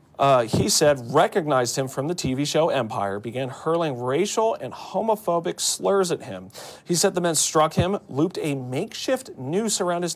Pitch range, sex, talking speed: 130-175 Hz, male, 175 wpm